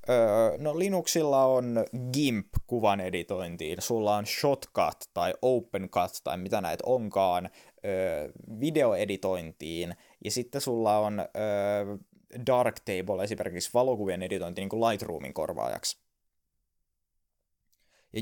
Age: 20-39